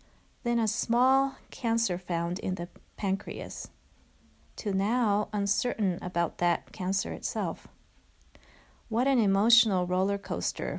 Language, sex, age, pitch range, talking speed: English, female, 40-59, 175-215 Hz, 110 wpm